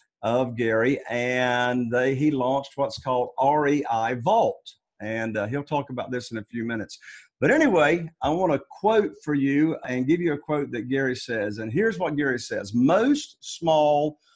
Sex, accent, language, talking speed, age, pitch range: male, American, English, 180 wpm, 50-69, 125-170 Hz